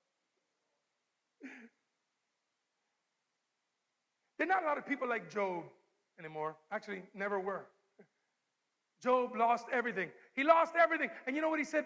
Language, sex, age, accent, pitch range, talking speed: English, male, 50-69, American, 220-285 Hz, 125 wpm